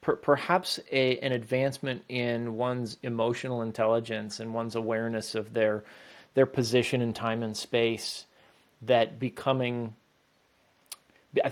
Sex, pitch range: male, 110-130 Hz